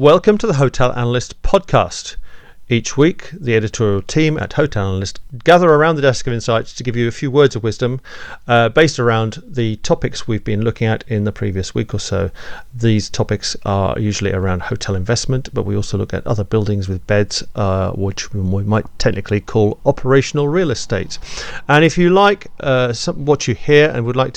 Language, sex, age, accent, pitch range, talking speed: English, male, 40-59, British, 105-130 Hz, 195 wpm